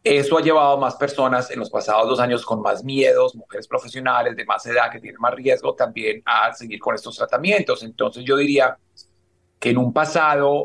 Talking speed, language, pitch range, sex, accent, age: 205 wpm, Spanish, 125-155 Hz, male, Mexican, 40-59